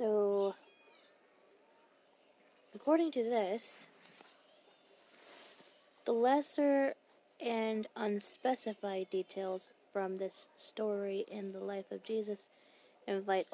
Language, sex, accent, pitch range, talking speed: English, female, American, 185-220 Hz, 80 wpm